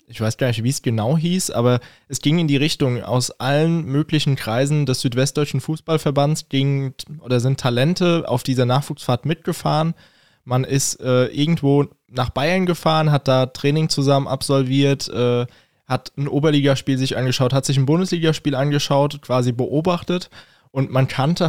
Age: 20-39